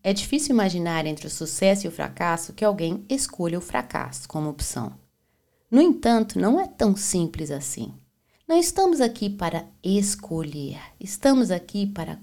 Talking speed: 150 wpm